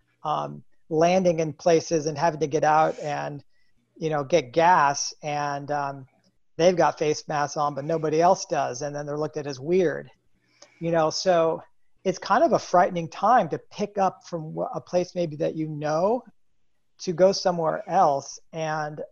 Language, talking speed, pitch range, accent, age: English, 175 wpm, 145-175 Hz, American, 40-59